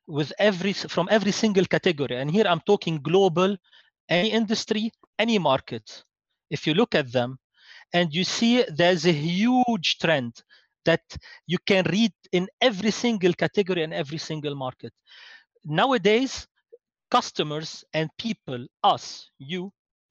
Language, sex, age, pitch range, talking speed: English, male, 40-59, 160-215 Hz, 135 wpm